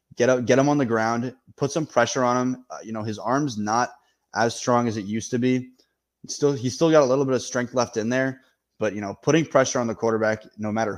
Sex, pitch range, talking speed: male, 105-125 Hz, 260 wpm